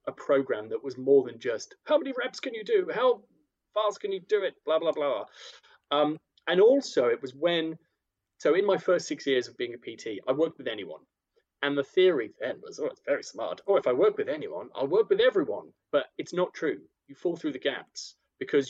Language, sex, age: English, male, 30-49